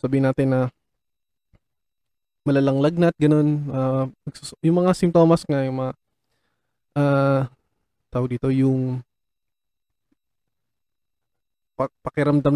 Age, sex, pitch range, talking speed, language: 20-39, male, 130-160 Hz, 90 wpm, Filipino